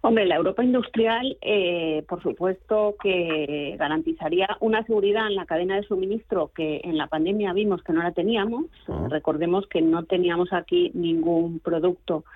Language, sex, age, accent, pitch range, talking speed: Spanish, female, 40-59, Spanish, 170-220 Hz, 155 wpm